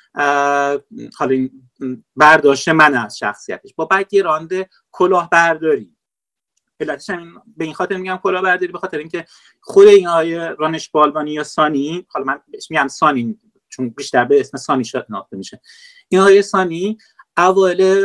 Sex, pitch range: male, 155-205 Hz